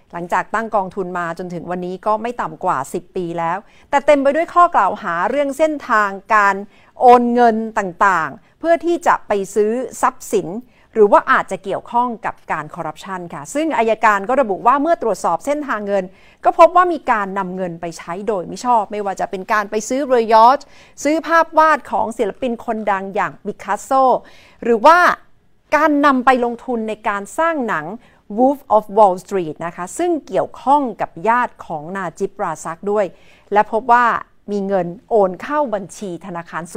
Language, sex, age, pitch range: Thai, female, 50-69, 185-255 Hz